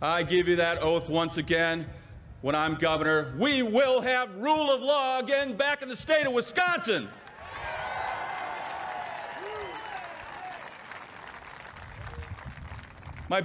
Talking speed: 105 wpm